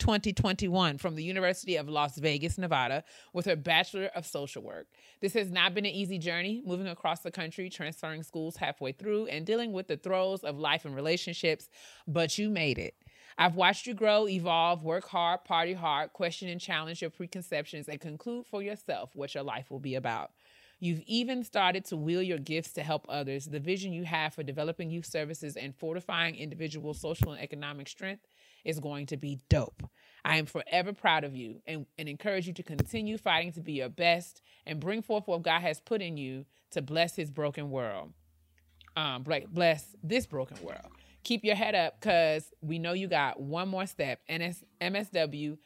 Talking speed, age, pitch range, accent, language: 190 wpm, 30-49, 150-190 Hz, American, English